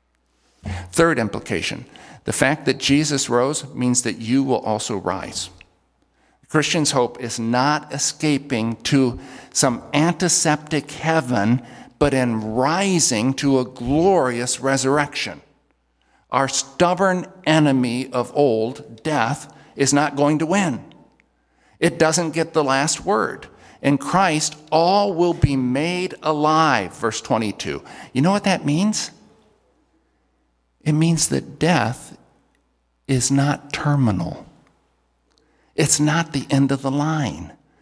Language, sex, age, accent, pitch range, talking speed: English, male, 50-69, American, 110-150 Hz, 115 wpm